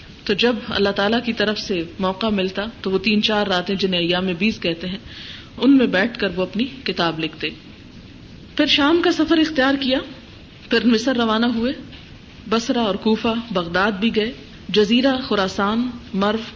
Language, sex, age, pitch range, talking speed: Urdu, female, 40-59, 200-260 Hz, 165 wpm